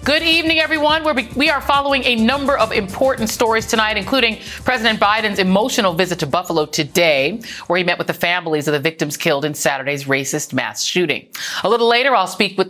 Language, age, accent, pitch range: English, 40-59, American, 170-230 Hz